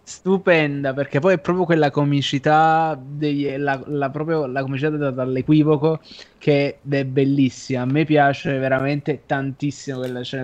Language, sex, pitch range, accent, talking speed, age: Italian, male, 135-170 Hz, native, 140 wpm, 20-39